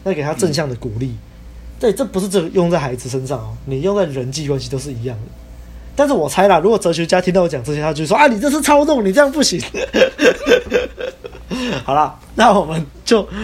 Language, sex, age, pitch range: Chinese, male, 20-39, 130-210 Hz